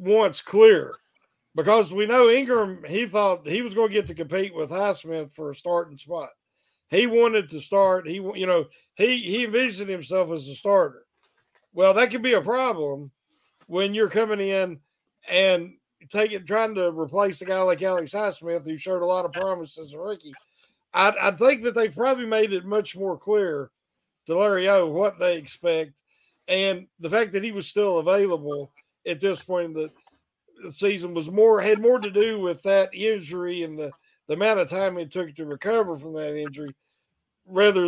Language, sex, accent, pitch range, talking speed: English, male, American, 170-215 Hz, 180 wpm